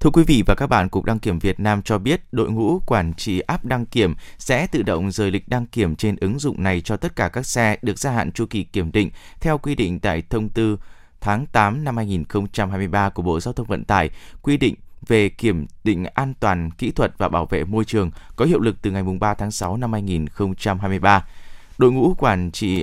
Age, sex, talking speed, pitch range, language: 20-39, male, 230 wpm, 95-125 Hz, Vietnamese